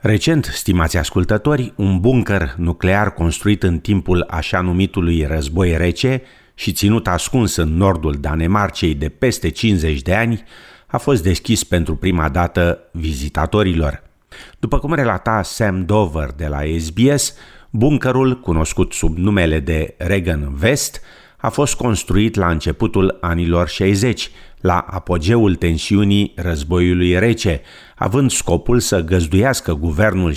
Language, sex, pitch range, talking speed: Romanian, male, 85-105 Hz, 125 wpm